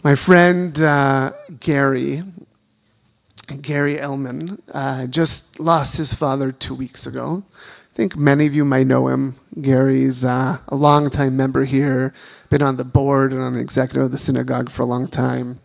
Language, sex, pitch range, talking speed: English, male, 130-150 Hz, 165 wpm